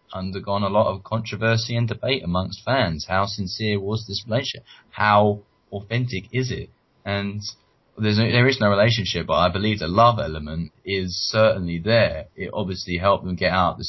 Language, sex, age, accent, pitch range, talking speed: English, male, 20-39, British, 90-110 Hz, 180 wpm